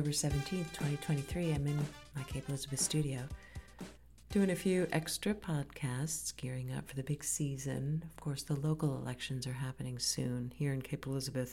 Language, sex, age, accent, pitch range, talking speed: English, female, 40-59, American, 125-145 Hz, 160 wpm